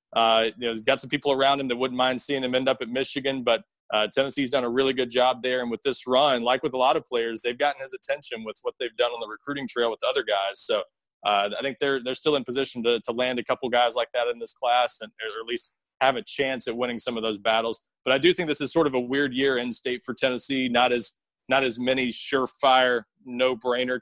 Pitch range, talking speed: 115-135 Hz, 265 wpm